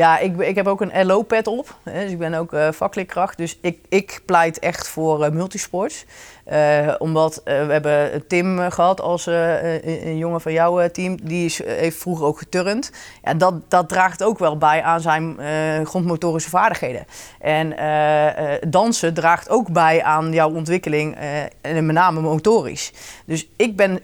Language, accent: Dutch, Dutch